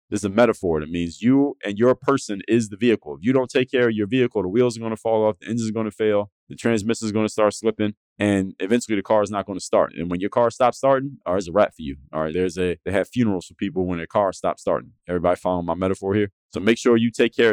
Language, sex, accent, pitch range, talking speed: English, male, American, 95-120 Hz, 295 wpm